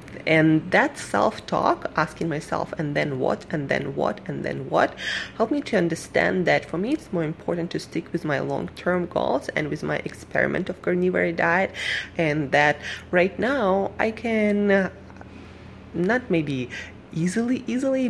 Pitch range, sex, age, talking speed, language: 150-195 Hz, female, 20-39, 155 wpm, English